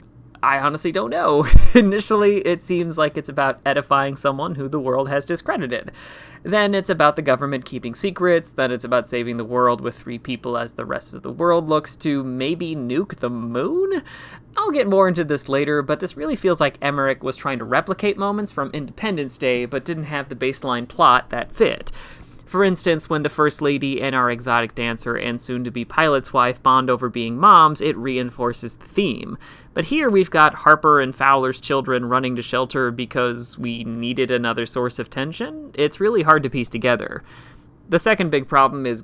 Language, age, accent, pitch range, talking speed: English, 30-49, American, 125-155 Hz, 190 wpm